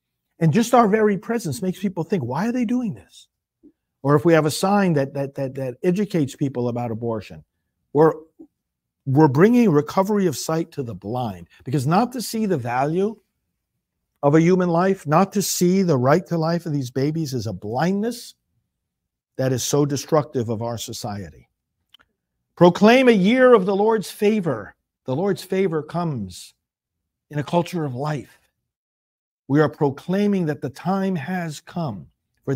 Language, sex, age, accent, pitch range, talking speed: English, male, 50-69, American, 125-180 Hz, 170 wpm